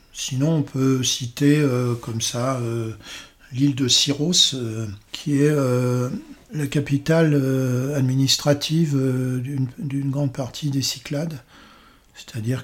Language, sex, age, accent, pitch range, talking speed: French, male, 50-69, French, 125-145 Hz, 120 wpm